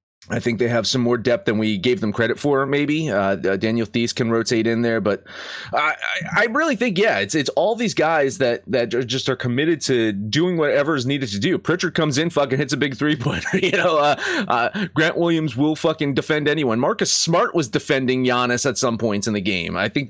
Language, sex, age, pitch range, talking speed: English, male, 30-49, 100-140 Hz, 230 wpm